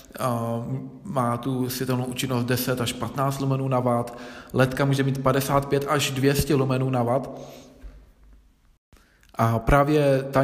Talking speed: 130 wpm